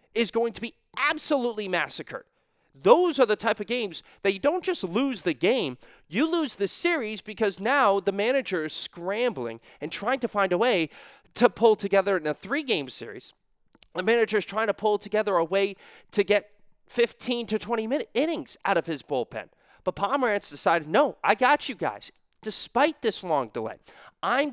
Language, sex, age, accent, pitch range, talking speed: English, male, 30-49, American, 180-245 Hz, 185 wpm